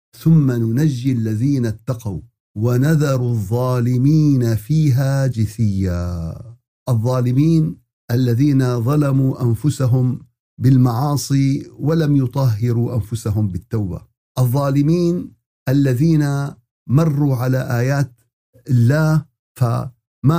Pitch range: 120-150 Hz